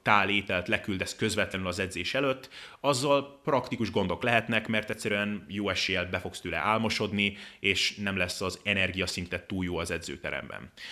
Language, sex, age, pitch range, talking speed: Hungarian, male, 30-49, 95-115 Hz, 155 wpm